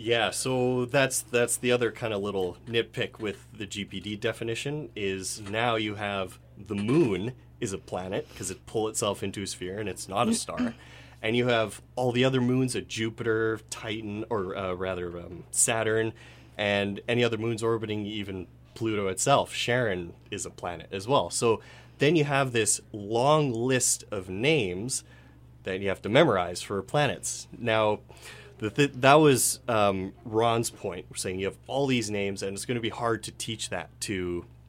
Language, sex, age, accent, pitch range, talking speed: English, male, 30-49, American, 95-120 Hz, 175 wpm